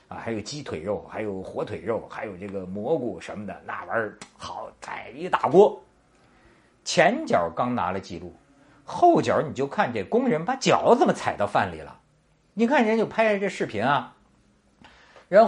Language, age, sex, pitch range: Chinese, 50-69, male, 150-220 Hz